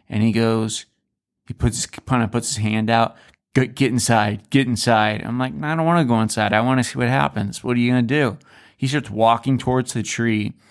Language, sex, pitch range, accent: English, male, 115-135 Hz, American